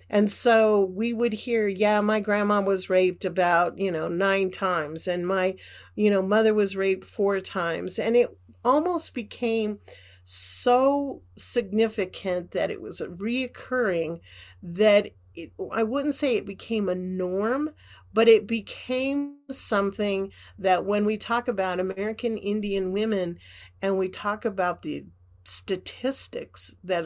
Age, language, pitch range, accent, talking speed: 50-69, English, 180-220 Hz, American, 135 wpm